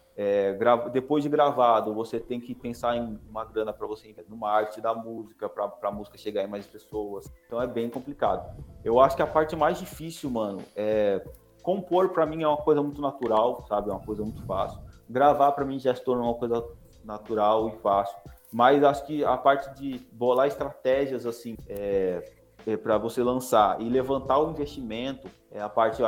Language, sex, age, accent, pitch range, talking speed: Portuguese, male, 20-39, Brazilian, 105-130 Hz, 195 wpm